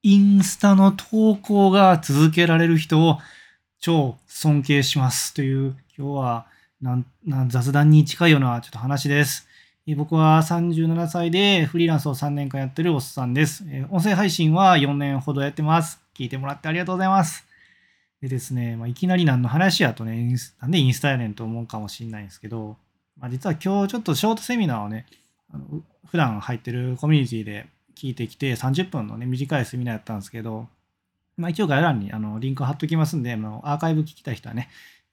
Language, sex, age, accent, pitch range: Japanese, male, 20-39, native, 120-165 Hz